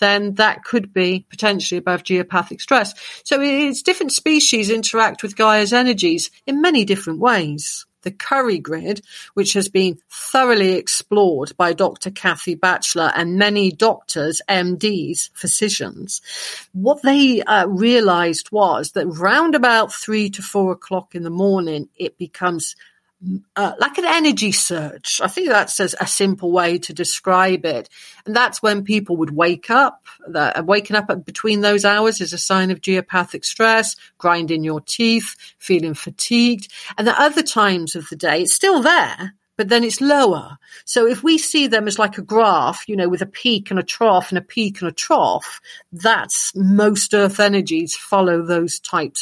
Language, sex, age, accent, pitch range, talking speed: English, female, 40-59, British, 175-225 Hz, 165 wpm